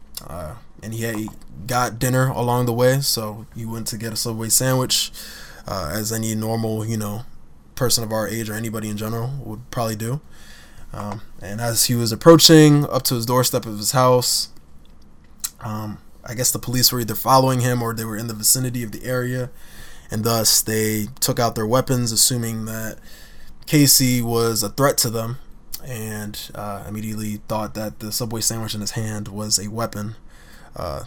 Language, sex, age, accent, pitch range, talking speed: English, male, 20-39, American, 105-125 Hz, 185 wpm